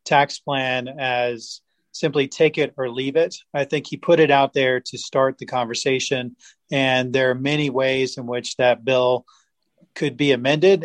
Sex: male